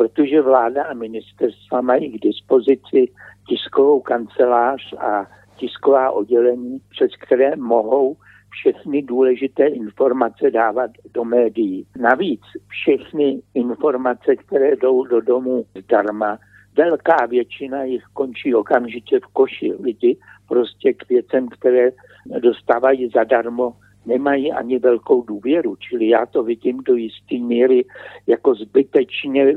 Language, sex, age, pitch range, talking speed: Slovak, male, 60-79, 115-145 Hz, 115 wpm